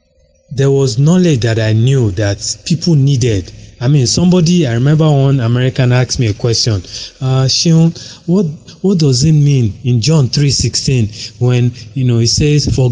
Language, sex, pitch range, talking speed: English, male, 115-160 Hz, 165 wpm